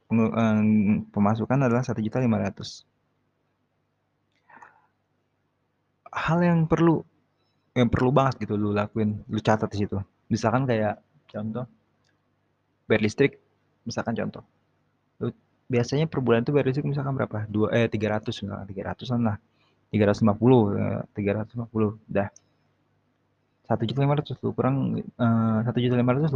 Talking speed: 100 wpm